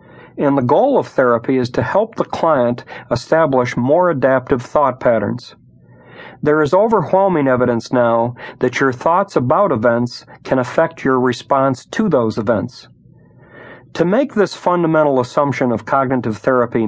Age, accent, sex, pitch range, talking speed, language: 50-69, American, male, 125-155 Hz, 140 wpm, English